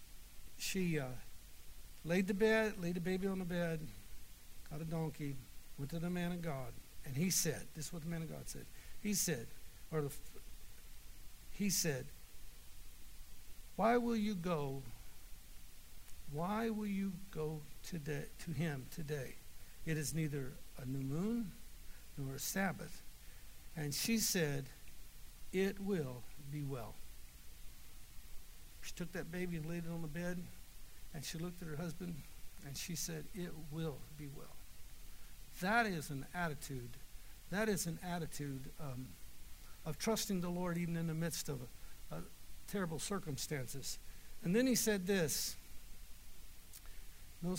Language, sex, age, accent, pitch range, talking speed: English, male, 60-79, American, 120-180 Hz, 145 wpm